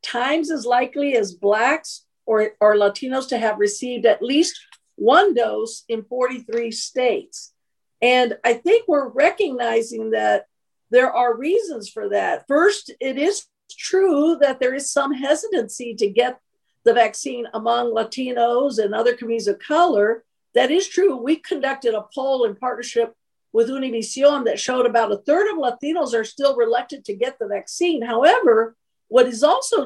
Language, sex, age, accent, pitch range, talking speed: English, female, 50-69, American, 230-310 Hz, 155 wpm